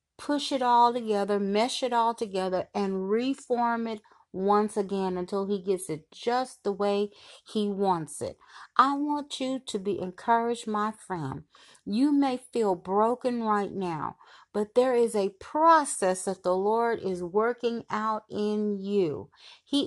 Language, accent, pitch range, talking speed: English, American, 195-245 Hz, 155 wpm